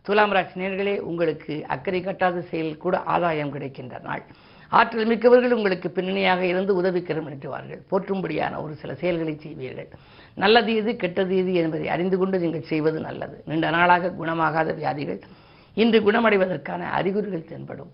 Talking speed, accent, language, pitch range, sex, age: 135 wpm, native, Tamil, 160-190 Hz, female, 50-69